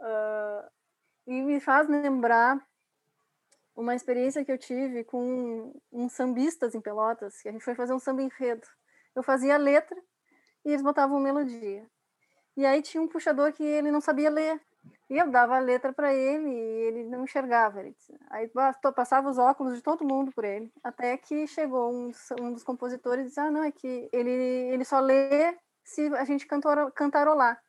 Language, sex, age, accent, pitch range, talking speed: Portuguese, female, 20-39, Brazilian, 240-290 Hz, 190 wpm